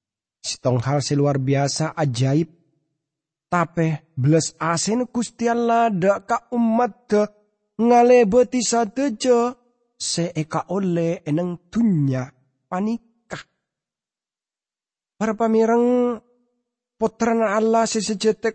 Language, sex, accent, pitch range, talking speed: English, male, Indonesian, 175-240 Hz, 80 wpm